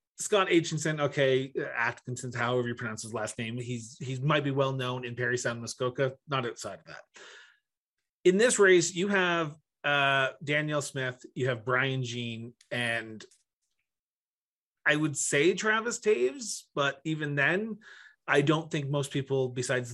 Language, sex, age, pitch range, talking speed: English, male, 30-49, 125-150 Hz, 155 wpm